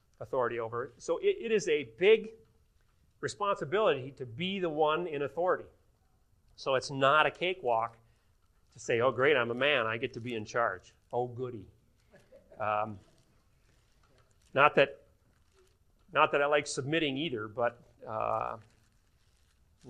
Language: English